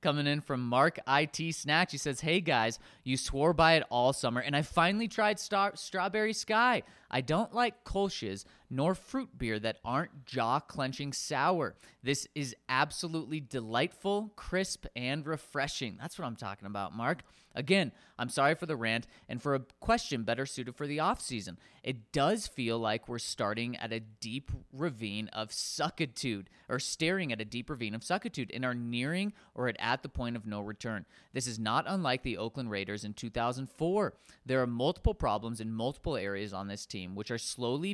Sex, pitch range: male, 115-160 Hz